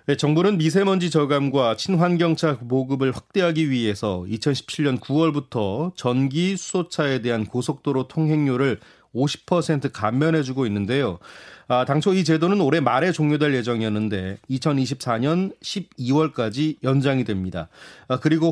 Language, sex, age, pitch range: Korean, male, 30-49, 125-165 Hz